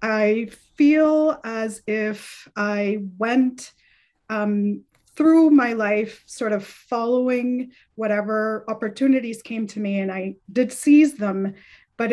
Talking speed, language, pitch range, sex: 120 wpm, English, 205-245 Hz, female